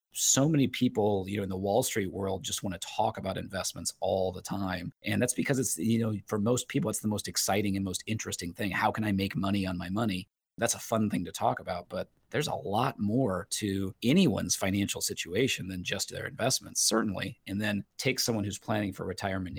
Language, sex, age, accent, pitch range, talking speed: English, male, 30-49, American, 95-110 Hz, 225 wpm